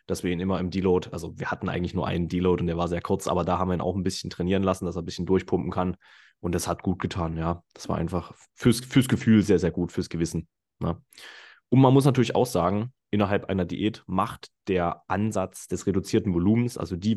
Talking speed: 240 wpm